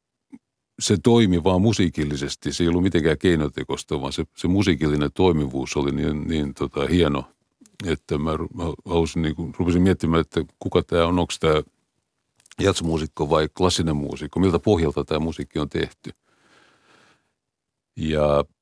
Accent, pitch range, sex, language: native, 75-90 Hz, male, Finnish